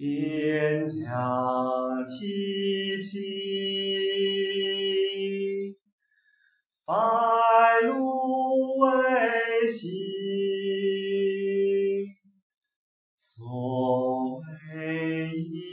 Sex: male